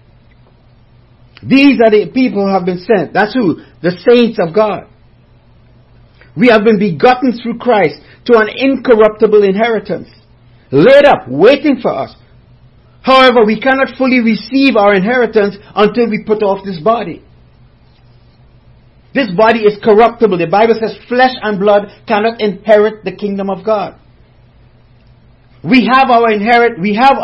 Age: 50-69